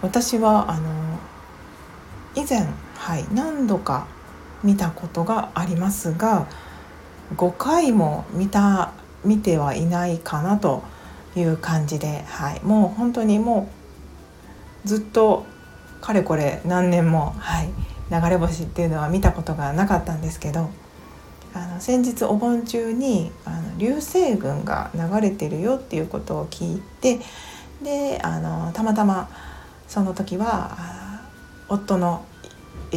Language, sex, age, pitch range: Japanese, female, 40-59, 155-205 Hz